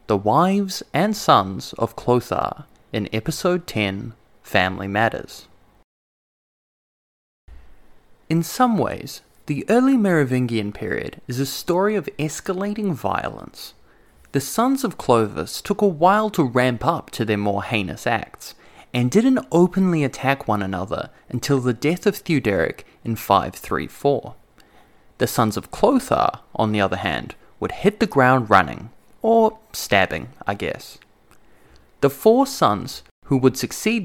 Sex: male